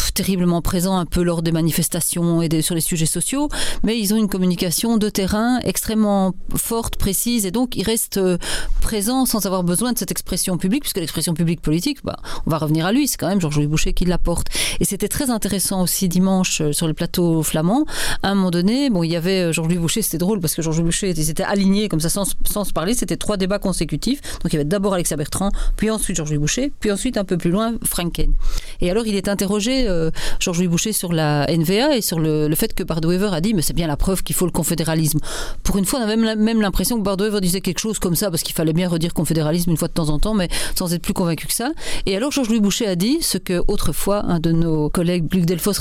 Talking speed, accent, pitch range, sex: 250 wpm, French, 165-210 Hz, female